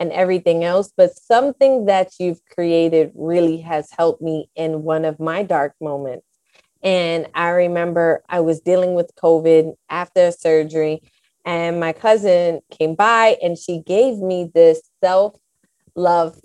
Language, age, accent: English, 20-39, American